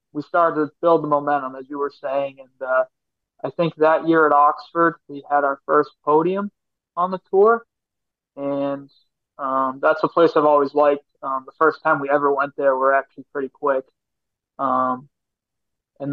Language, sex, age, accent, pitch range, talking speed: English, male, 20-39, American, 135-155 Hz, 180 wpm